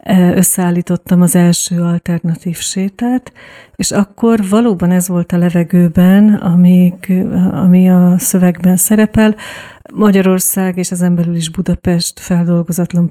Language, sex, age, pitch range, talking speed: Hungarian, female, 40-59, 180-195 Hz, 110 wpm